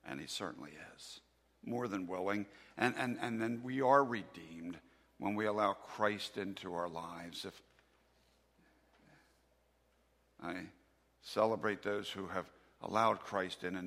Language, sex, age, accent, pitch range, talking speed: English, male, 50-69, American, 75-120 Hz, 135 wpm